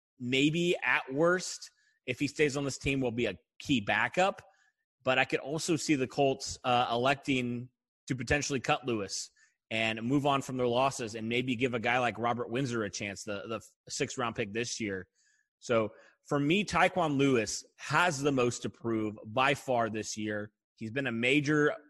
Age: 30-49